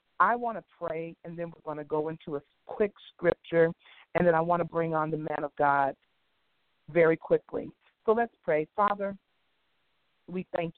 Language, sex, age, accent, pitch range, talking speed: English, female, 40-59, American, 160-205 Hz, 185 wpm